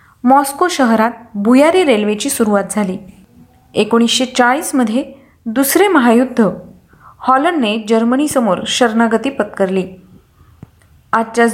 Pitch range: 220-275 Hz